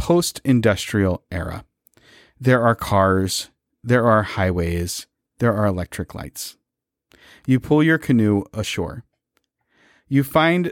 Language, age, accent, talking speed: English, 40-59, American, 110 wpm